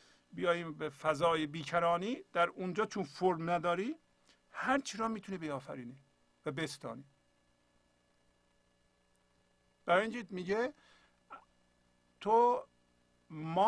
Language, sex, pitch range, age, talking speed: Persian, male, 145-205 Hz, 50-69, 85 wpm